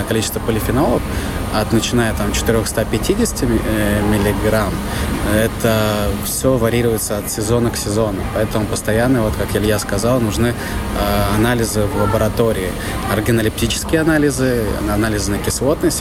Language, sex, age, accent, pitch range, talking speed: Russian, male, 20-39, native, 100-115 Hz, 110 wpm